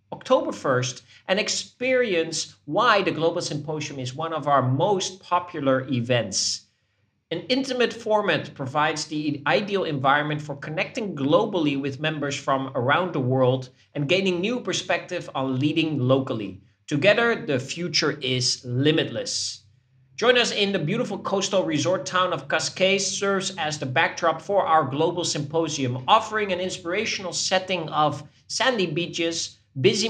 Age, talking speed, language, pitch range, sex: 40-59, 140 wpm, English, 130-185 Hz, male